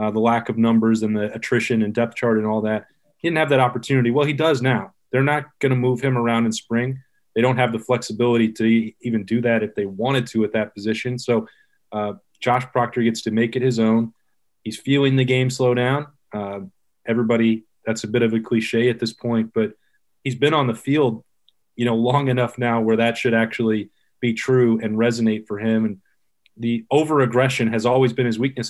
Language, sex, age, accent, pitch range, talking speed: English, male, 30-49, American, 115-130 Hz, 215 wpm